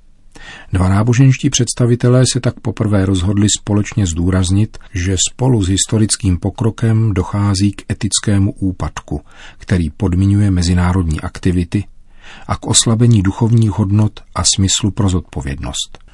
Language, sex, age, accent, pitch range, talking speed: Czech, male, 40-59, native, 90-105 Hz, 115 wpm